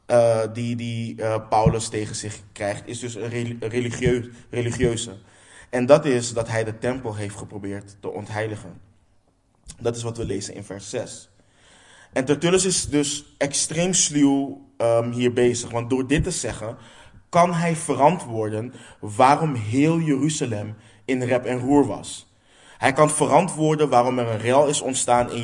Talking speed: 155 wpm